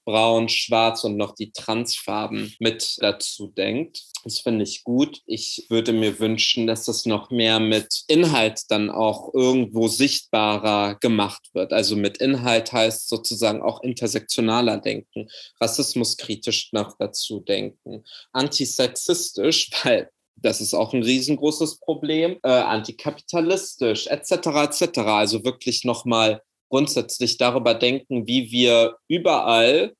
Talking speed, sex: 125 wpm, male